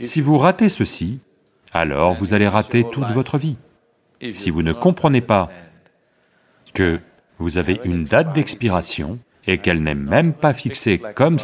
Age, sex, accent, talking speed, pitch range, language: 40-59, male, French, 150 wpm, 90-135 Hz, English